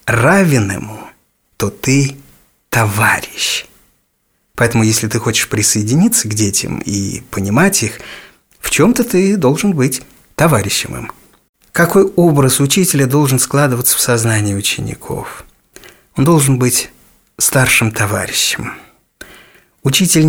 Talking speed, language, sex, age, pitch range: 105 wpm, Russian, male, 30-49, 115-150 Hz